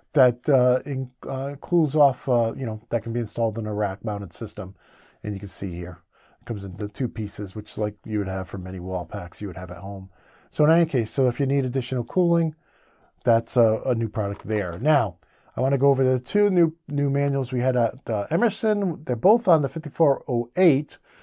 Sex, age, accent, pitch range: male, 50-69, American, 115-160 Hz